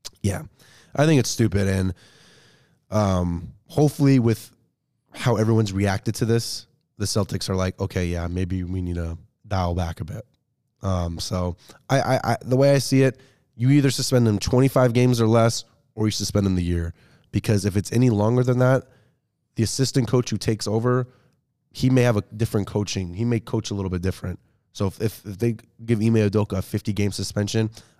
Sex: male